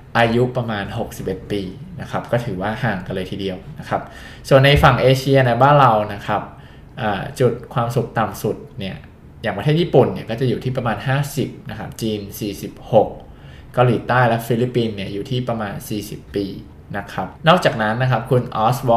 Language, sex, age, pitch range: Thai, male, 20-39, 105-130 Hz